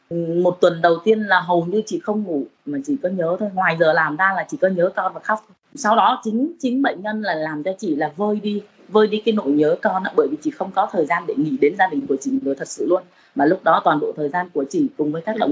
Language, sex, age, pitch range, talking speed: Vietnamese, female, 20-39, 165-230 Hz, 300 wpm